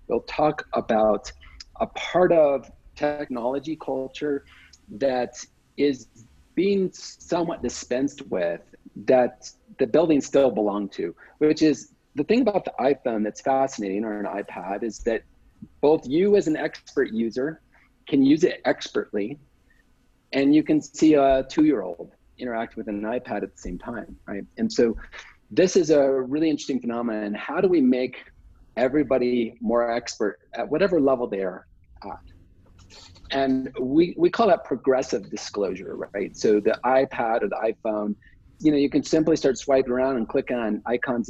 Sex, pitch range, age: male, 115-160 Hz, 40-59